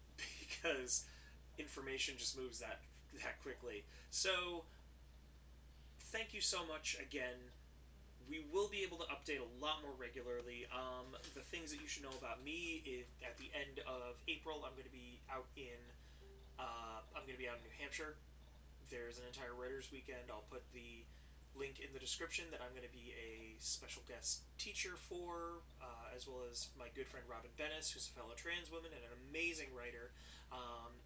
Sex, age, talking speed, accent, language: male, 30-49, 180 wpm, American, English